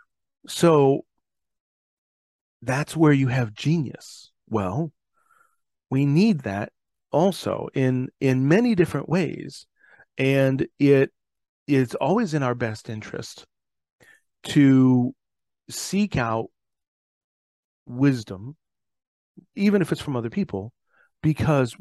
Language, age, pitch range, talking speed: English, 40-59, 115-150 Hz, 95 wpm